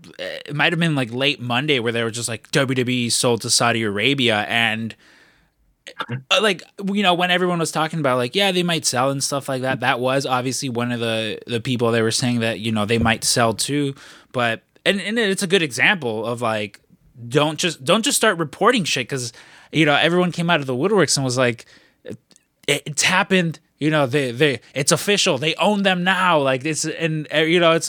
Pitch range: 120-170 Hz